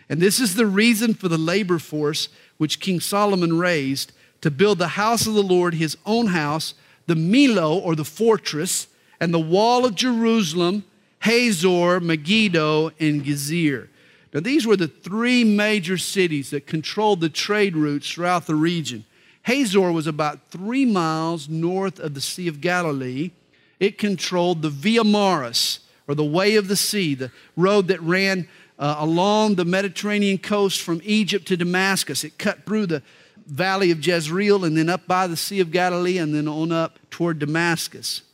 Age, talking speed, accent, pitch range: 50-69, 170 wpm, American, 150-195 Hz